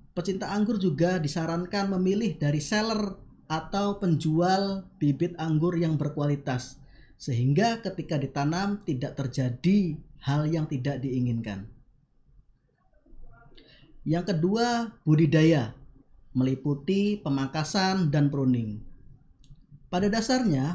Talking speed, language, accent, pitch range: 90 wpm, Indonesian, native, 140-195 Hz